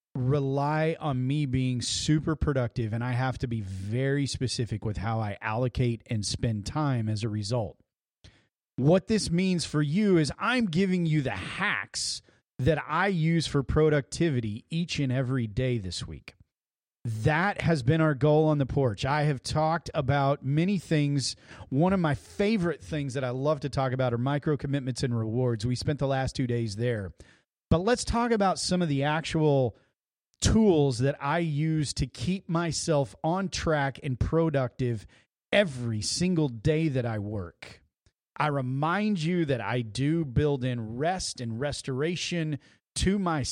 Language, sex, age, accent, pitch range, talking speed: English, male, 40-59, American, 125-165 Hz, 165 wpm